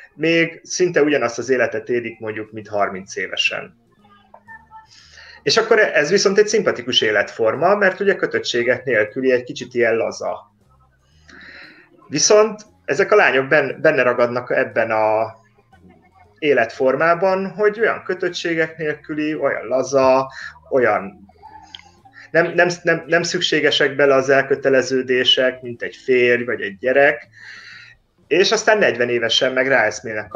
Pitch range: 115-175 Hz